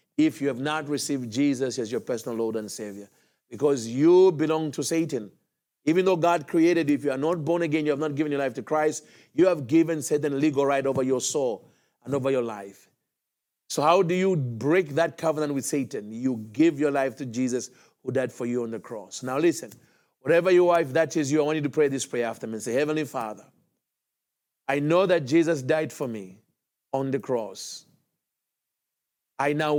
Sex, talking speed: male, 210 wpm